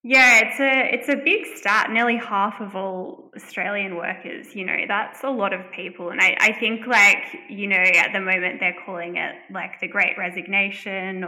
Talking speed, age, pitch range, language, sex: 195 wpm, 10-29, 190-235 Hz, English, female